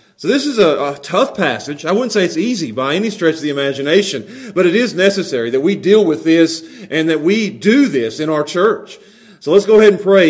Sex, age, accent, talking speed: male, 40-59, American, 240 wpm